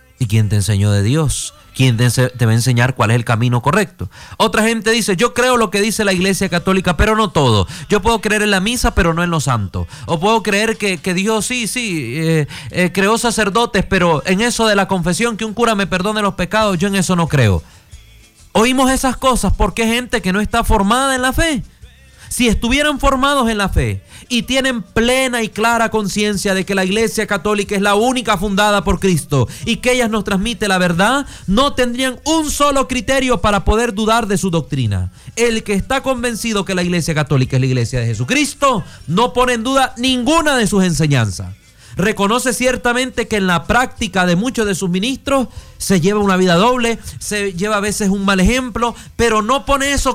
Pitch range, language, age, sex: 170-235 Hz, Spanish, 30-49, male